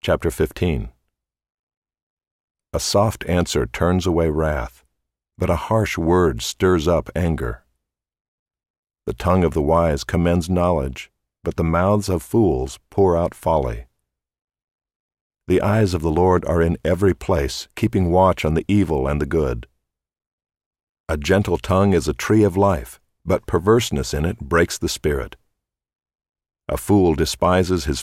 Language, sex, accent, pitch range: English, male, American, 70-90 Hz